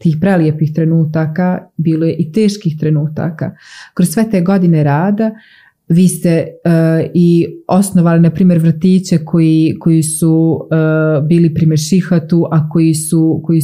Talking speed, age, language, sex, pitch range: 140 wpm, 30-49, Croatian, female, 160-190 Hz